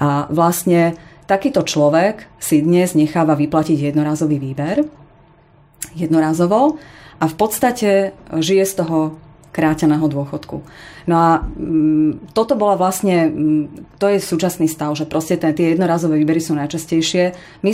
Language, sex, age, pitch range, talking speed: Slovak, female, 30-49, 150-170 Hz, 120 wpm